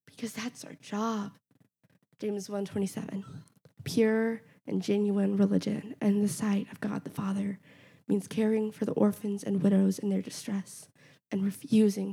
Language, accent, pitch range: English, American, 195-220 Hz